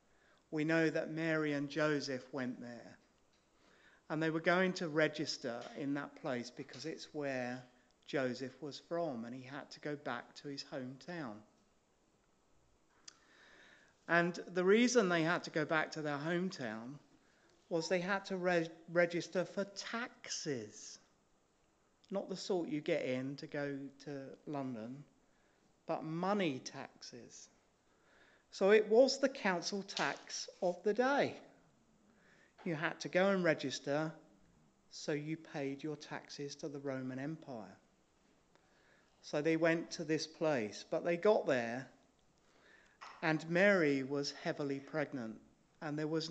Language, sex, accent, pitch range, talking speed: English, male, British, 140-175 Hz, 135 wpm